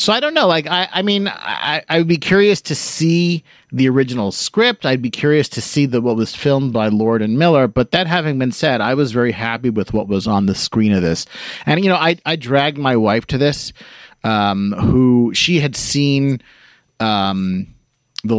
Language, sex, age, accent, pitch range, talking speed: English, male, 30-49, American, 100-135 Hz, 210 wpm